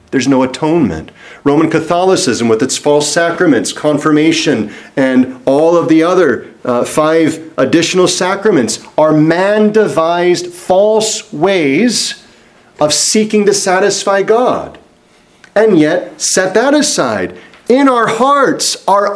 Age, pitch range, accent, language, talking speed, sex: 40-59, 125-185 Hz, American, English, 115 wpm, male